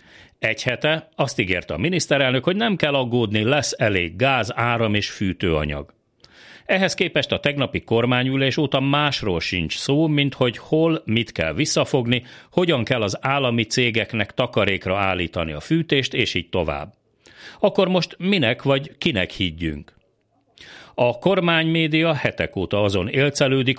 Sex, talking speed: male, 140 wpm